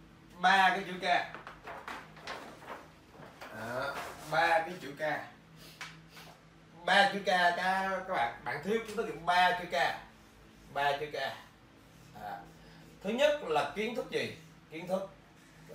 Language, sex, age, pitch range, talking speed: Vietnamese, male, 30-49, 155-220 Hz, 135 wpm